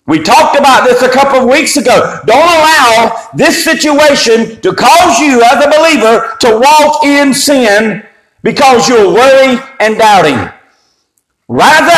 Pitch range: 250-300 Hz